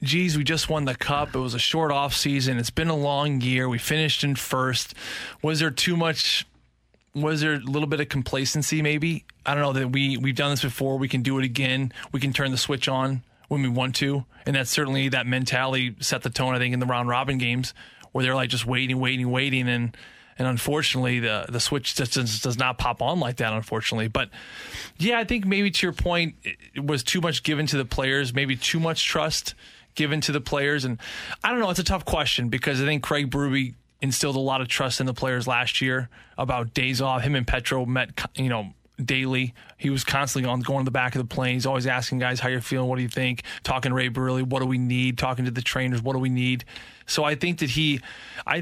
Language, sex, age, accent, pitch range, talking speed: English, male, 20-39, American, 125-145 Hz, 240 wpm